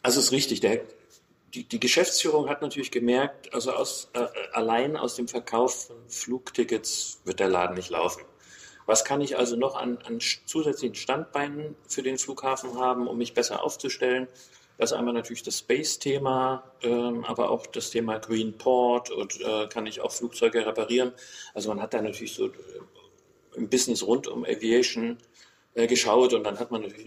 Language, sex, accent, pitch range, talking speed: German, male, German, 110-135 Hz, 175 wpm